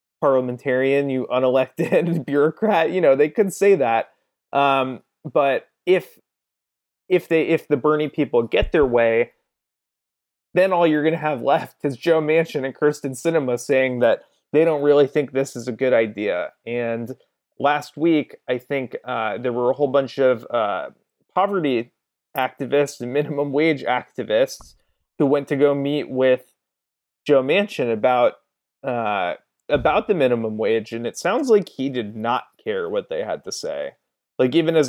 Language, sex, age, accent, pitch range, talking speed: English, male, 20-39, American, 130-165 Hz, 160 wpm